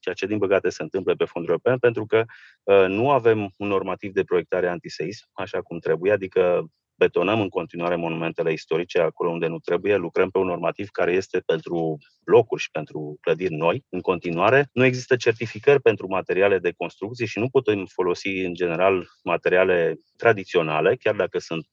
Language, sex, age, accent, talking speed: Romanian, male, 30-49, native, 175 wpm